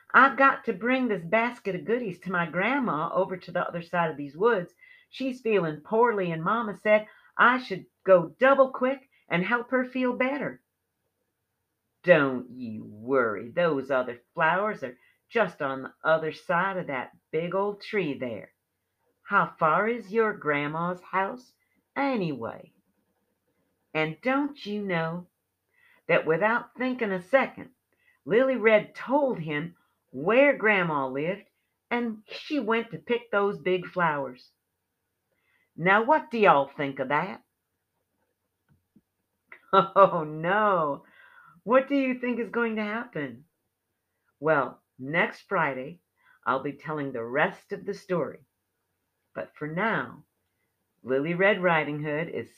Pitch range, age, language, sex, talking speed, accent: 150-235 Hz, 50-69, English, female, 135 wpm, American